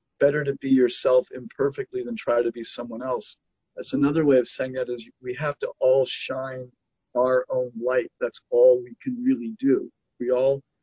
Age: 40-59